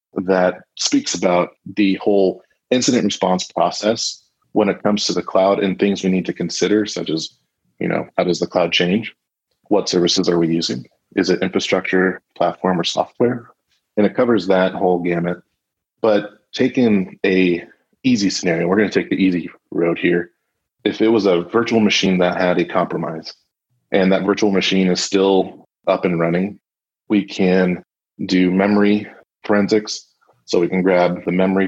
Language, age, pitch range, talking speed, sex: English, 30-49, 90-105 Hz, 170 wpm, male